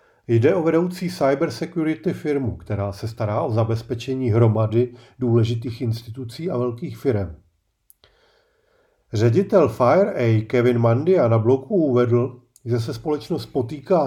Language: Czech